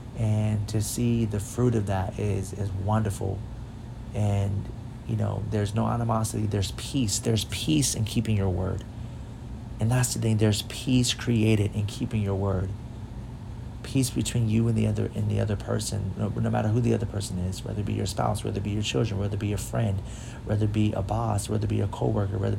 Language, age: English, 30-49